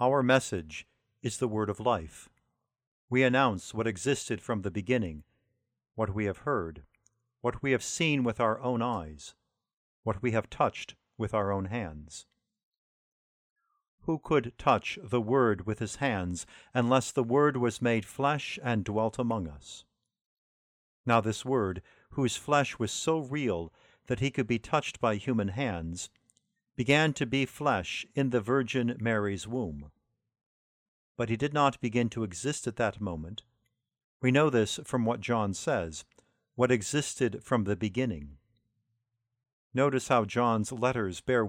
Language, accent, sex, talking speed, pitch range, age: English, American, male, 150 wpm, 105-130 Hz, 50-69